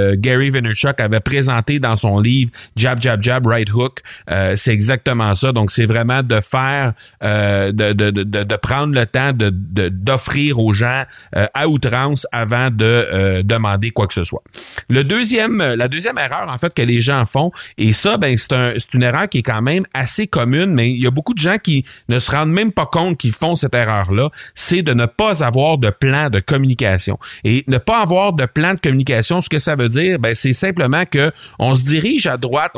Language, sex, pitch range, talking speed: French, male, 120-155 Hz, 220 wpm